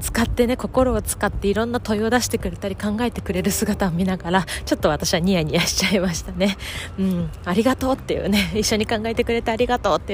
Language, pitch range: Japanese, 190-260 Hz